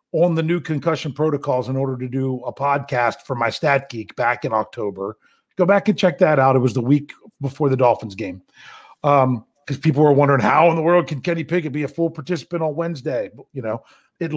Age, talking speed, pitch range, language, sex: 40-59, 220 wpm, 140-190 Hz, English, male